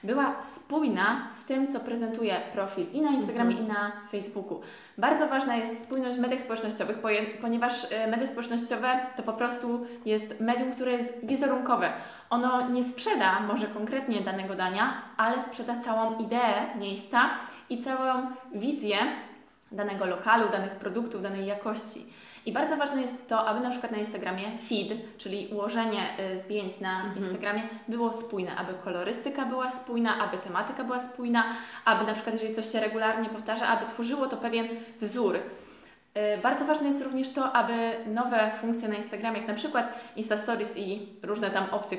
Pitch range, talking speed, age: 215-255 Hz, 155 wpm, 20-39